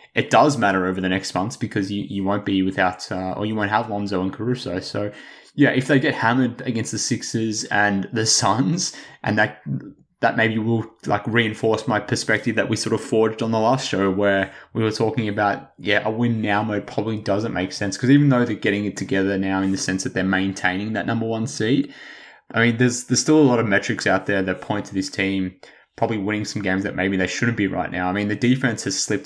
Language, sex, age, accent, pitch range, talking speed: English, male, 20-39, Australian, 95-115 Hz, 240 wpm